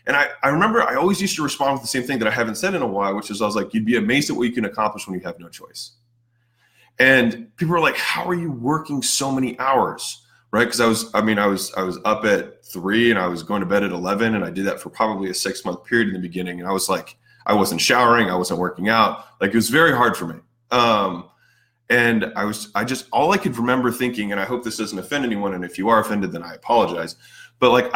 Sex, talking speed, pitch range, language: male, 275 wpm, 105-125 Hz, English